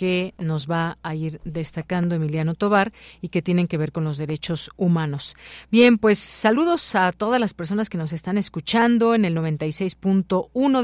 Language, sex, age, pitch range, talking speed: Spanish, female, 40-59, 160-200 Hz, 170 wpm